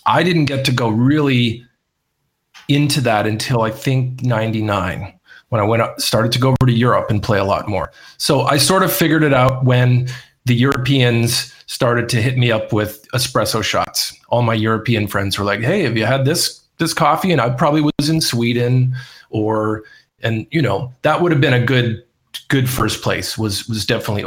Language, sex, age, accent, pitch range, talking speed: English, male, 40-59, American, 110-135 Hz, 200 wpm